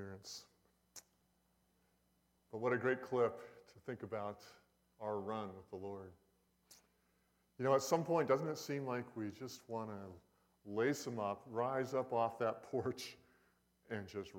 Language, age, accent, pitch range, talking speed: English, 50-69, American, 90-130 Hz, 150 wpm